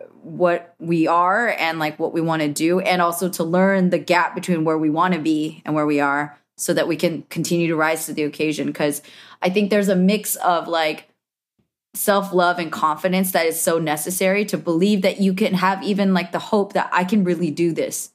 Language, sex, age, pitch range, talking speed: English, female, 20-39, 160-200 Hz, 220 wpm